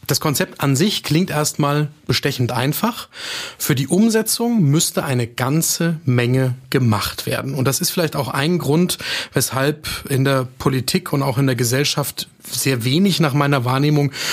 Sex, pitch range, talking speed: male, 130-165 Hz, 160 wpm